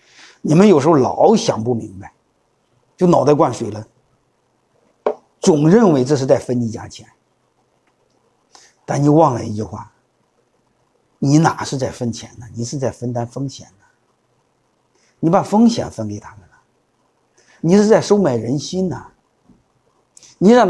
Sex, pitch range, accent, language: male, 120-160 Hz, native, Chinese